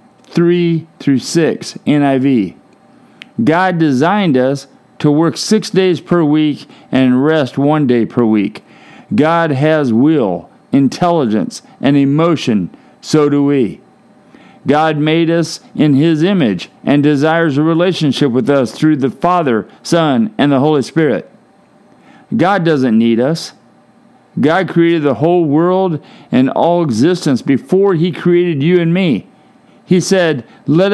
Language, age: English, 50-69